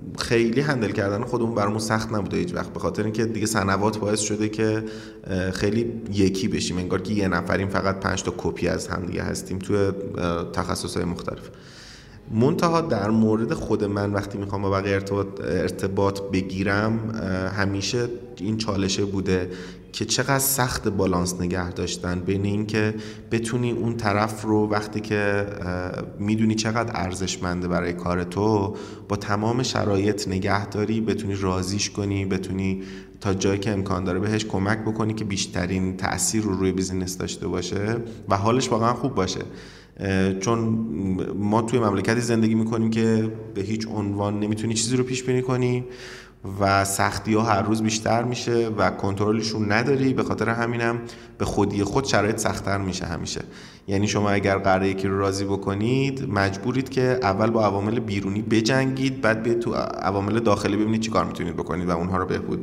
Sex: male